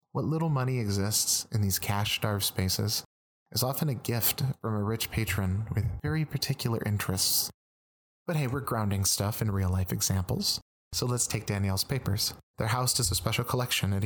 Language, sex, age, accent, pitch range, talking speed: English, male, 30-49, American, 100-125 Hz, 175 wpm